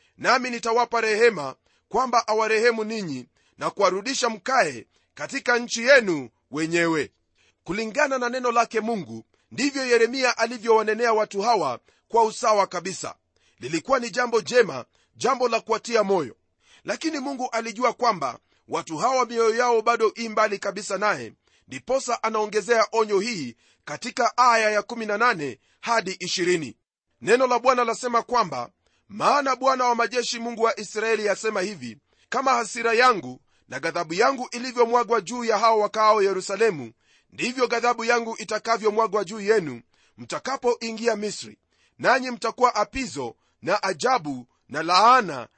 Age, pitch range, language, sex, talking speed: 40-59, 195-240 Hz, Swahili, male, 130 wpm